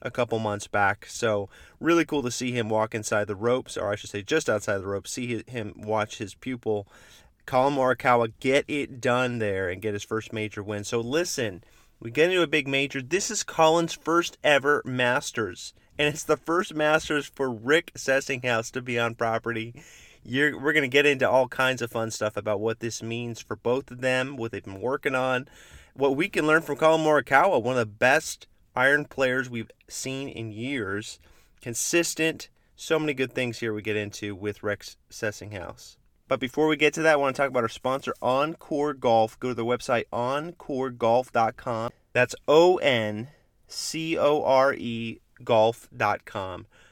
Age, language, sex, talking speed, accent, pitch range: 30-49, English, male, 180 wpm, American, 115-145 Hz